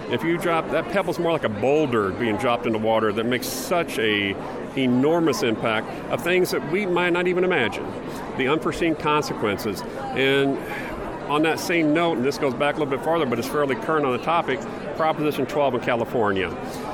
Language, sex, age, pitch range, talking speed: English, male, 50-69, 115-150 Hz, 190 wpm